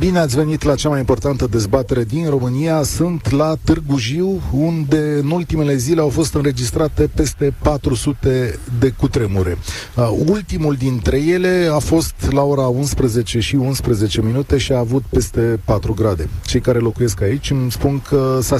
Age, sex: 30-49, male